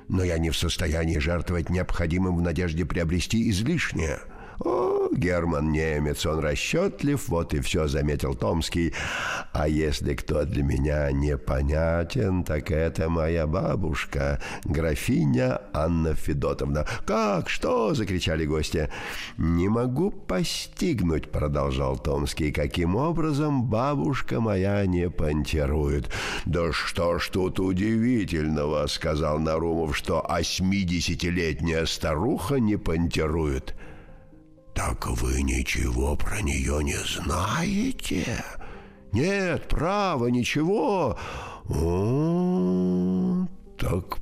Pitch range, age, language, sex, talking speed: 75-105 Hz, 60-79, Russian, male, 100 wpm